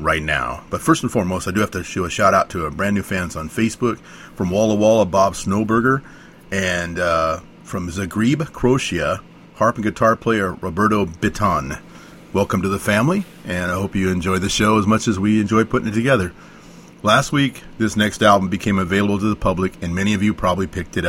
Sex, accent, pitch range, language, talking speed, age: male, American, 95-115 Hz, English, 210 wpm, 40-59